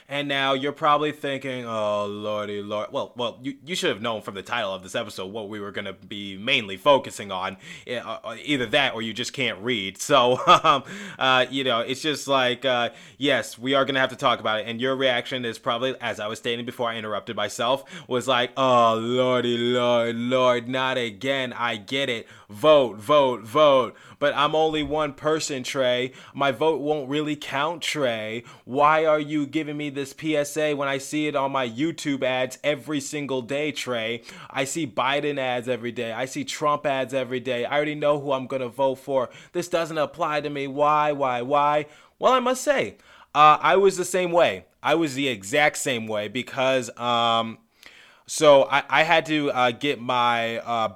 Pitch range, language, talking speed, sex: 120-145 Hz, English, 200 wpm, male